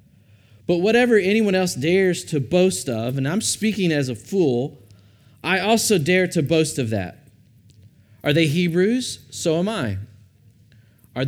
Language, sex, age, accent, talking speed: English, male, 30-49, American, 150 wpm